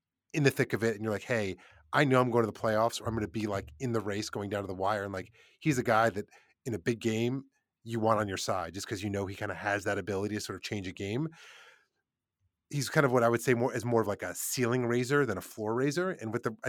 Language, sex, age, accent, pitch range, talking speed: English, male, 30-49, American, 100-120 Hz, 300 wpm